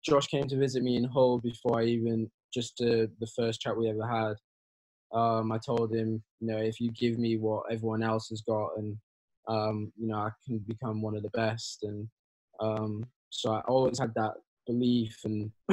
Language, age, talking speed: English, 10-29, 200 wpm